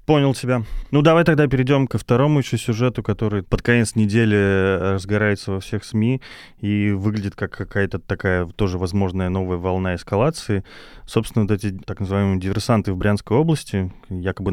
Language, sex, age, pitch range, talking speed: Russian, male, 20-39, 100-120 Hz, 155 wpm